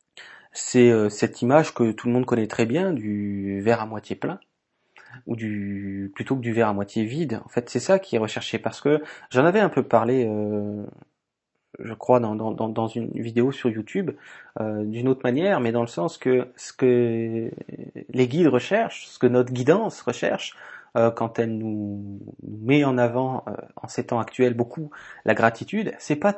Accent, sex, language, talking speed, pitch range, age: French, male, French, 195 wpm, 115-150 Hz, 30-49